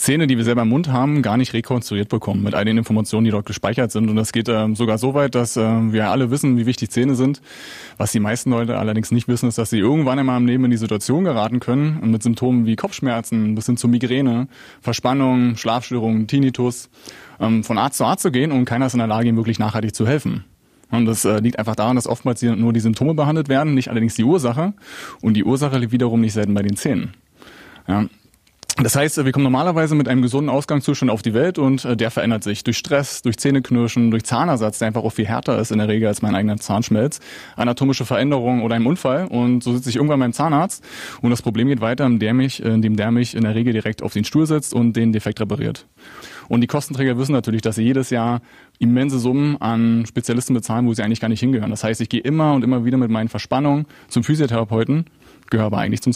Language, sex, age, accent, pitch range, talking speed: German, male, 30-49, German, 110-130 Hz, 225 wpm